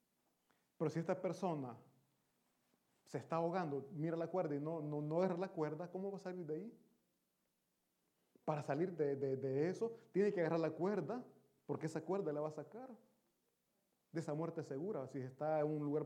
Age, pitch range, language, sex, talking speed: 30-49, 145-185 Hz, Italian, male, 185 wpm